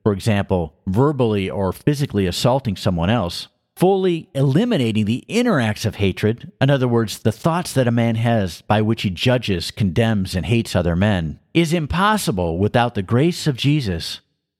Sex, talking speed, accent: male, 165 wpm, American